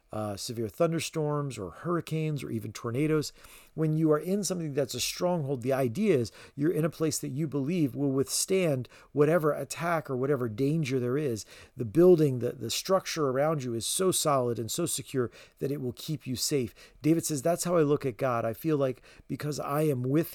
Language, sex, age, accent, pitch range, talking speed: English, male, 40-59, American, 125-165 Hz, 205 wpm